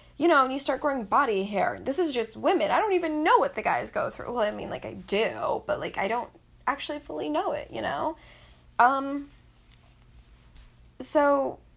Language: English